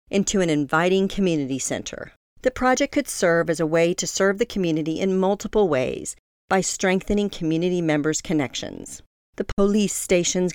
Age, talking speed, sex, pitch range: 40-59, 155 wpm, female, 155-200 Hz